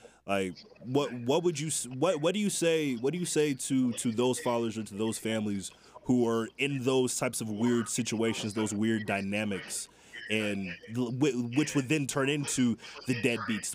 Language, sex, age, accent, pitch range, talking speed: English, male, 20-39, American, 110-130 Hz, 180 wpm